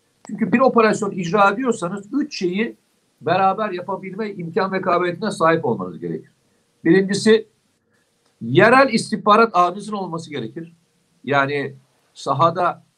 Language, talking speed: Turkish, 105 wpm